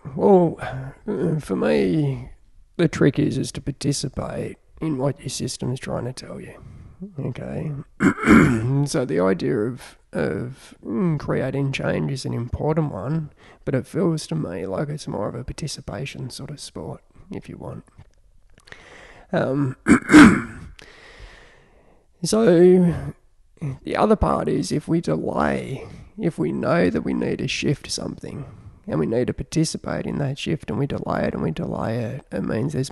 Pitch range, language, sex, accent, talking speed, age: 130-170 Hz, English, male, Australian, 155 wpm, 20-39